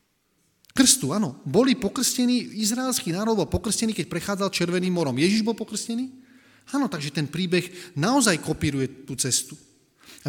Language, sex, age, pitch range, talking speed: Slovak, male, 40-59, 135-185 Hz, 140 wpm